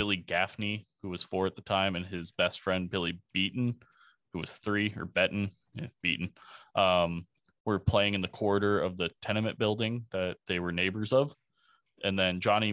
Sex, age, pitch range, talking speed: male, 20-39, 95-110 Hz, 175 wpm